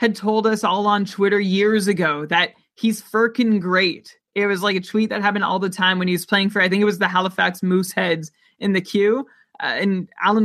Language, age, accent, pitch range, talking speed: English, 20-39, American, 185-220 Hz, 230 wpm